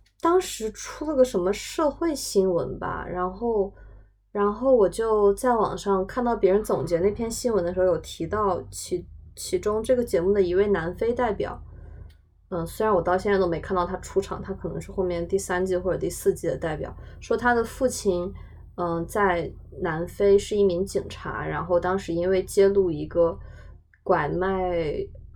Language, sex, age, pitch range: Chinese, female, 20-39, 170-210 Hz